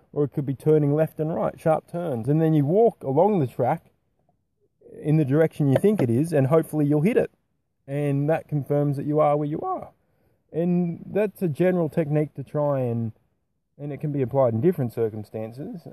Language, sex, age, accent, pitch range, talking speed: English, male, 20-39, Australian, 135-175 Hz, 205 wpm